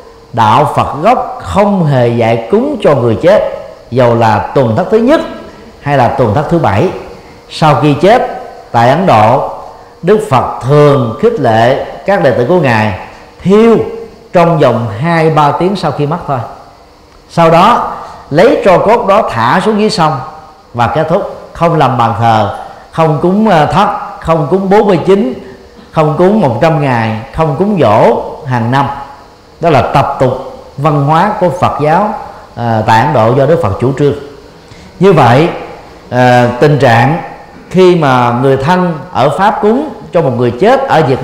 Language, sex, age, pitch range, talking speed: Vietnamese, male, 50-69, 125-180 Hz, 165 wpm